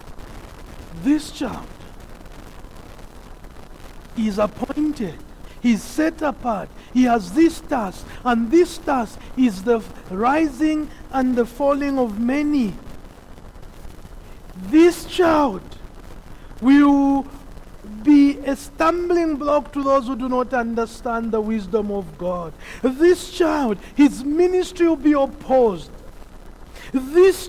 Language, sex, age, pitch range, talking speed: English, male, 50-69, 230-310 Hz, 105 wpm